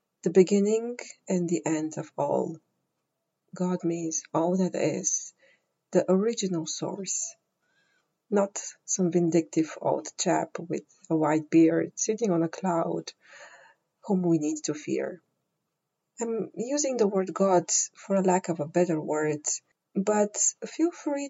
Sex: female